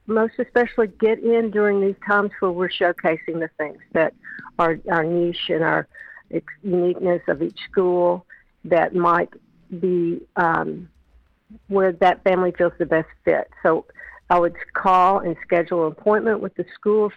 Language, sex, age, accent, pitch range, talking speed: English, female, 50-69, American, 175-220 Hz, 155 wpm